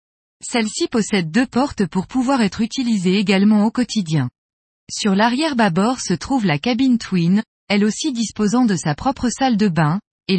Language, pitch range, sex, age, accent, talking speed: French, 180-240 Hz, female, 20-39, French, 160 wpm